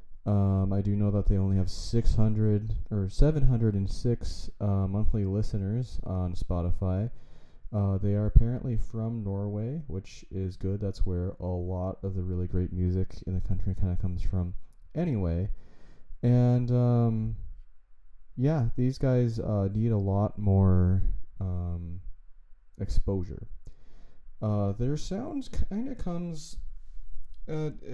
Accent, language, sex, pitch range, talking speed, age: American, English, male, 95-115 Hz, 130 wpm, 20-39